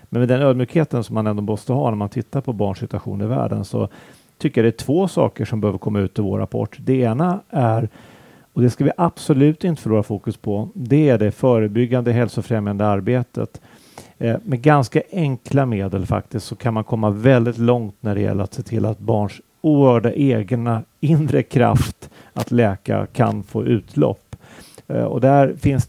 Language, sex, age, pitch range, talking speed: Swedish, male, 40-59, 110-135 Hz, 190 wpm